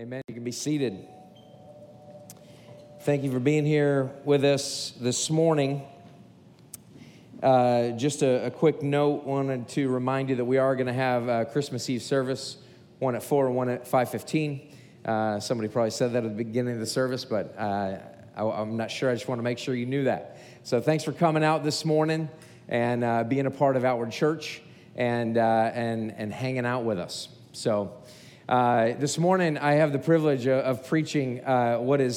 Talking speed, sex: 195 wpm, male